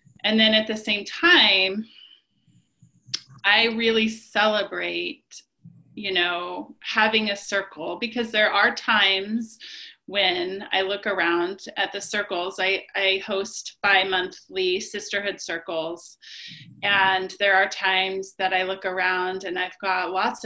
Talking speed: 125 wpm